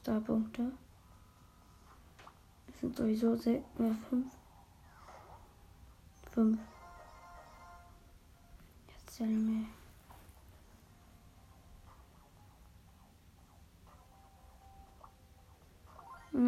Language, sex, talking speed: German, female, 35 wpm